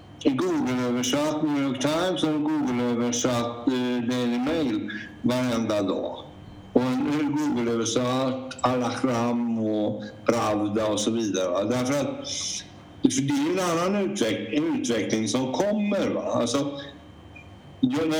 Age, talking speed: 60-79, 105 wpm